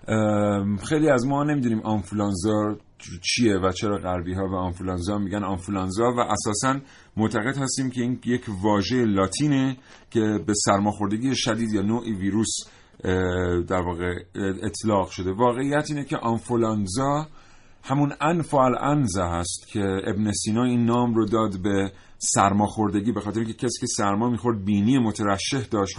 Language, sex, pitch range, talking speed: Persian, male, 100-120 Hz, 140 wpm